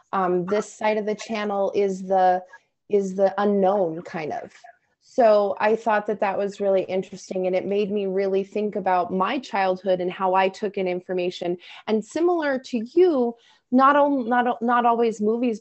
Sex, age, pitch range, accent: female, 20-39, 200-240 Hz, American